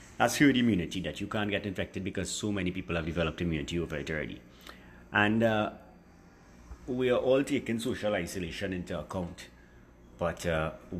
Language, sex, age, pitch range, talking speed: English, male, 30-49, 85-105 Hz, 165 wpm